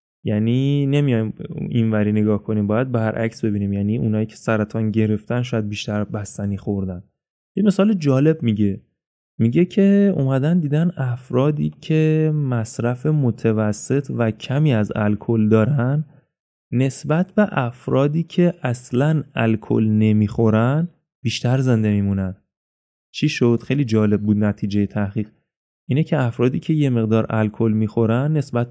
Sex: male